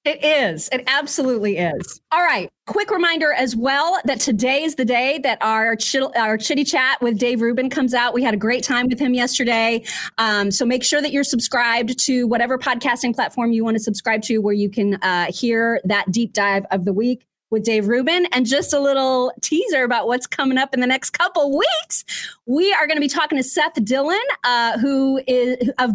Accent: American